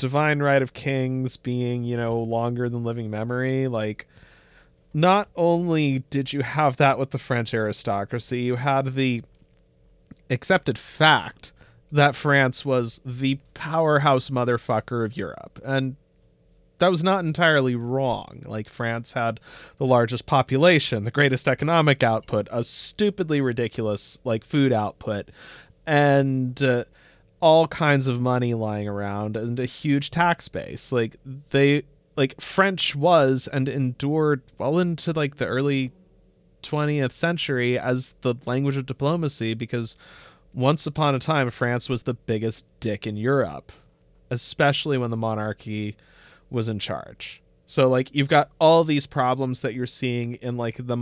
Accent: American